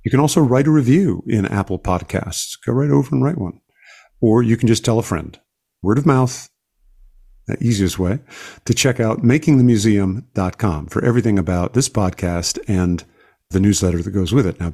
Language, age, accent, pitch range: English, 50-69, American, 95-120 Hz